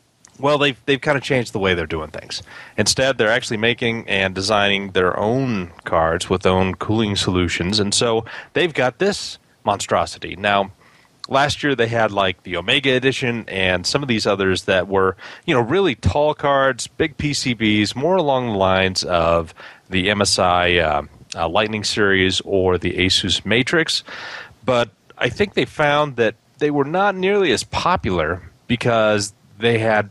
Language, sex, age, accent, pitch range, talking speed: English, male, 30-49, American, 95-125 Hz, 165 wpm